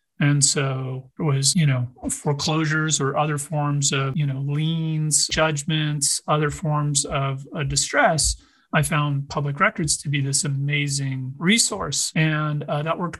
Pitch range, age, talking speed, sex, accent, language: 145-170 Hz, 40-59, 150 wpm, male, American, English